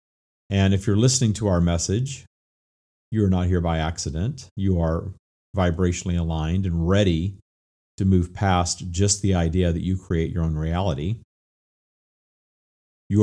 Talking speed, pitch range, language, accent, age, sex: 145 wpm, 80-105 Hz, English, American, 40-59, male